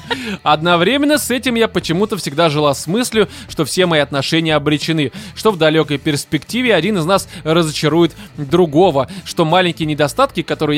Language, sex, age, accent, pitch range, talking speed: Russian, male, 20-39, native, 150-200 Hz, 150 wpm